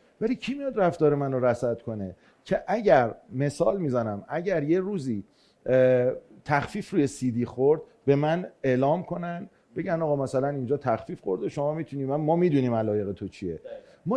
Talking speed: 155 wpm